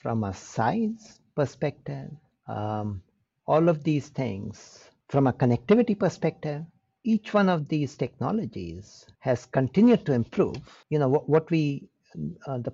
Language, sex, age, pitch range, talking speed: English, male, 60-79, 115-155 Hz, 135 wpm